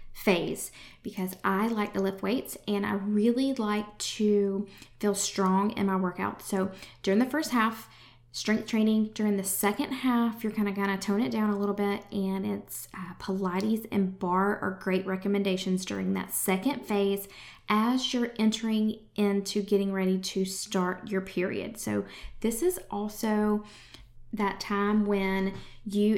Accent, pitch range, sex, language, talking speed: American, 190-220 Hz, female, English, 160 wpm